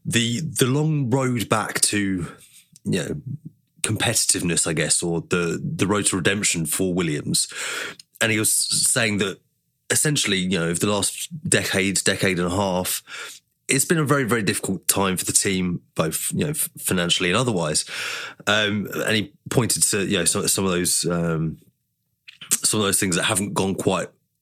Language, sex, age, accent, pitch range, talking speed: English, male, 20-39, British, 90-130 Hz, 175 wpm